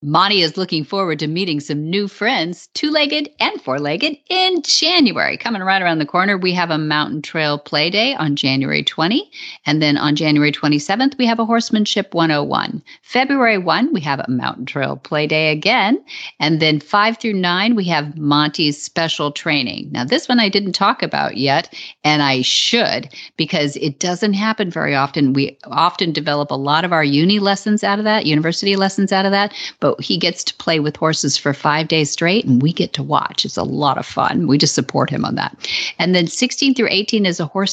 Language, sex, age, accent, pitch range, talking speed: English, female, 50-69, American, 150-215 Hz, 205 wpm